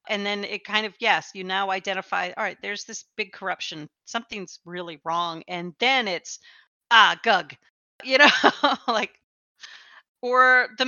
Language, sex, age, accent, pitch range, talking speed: English, female, 40-59, American, 185-230 Hz, 155 wpm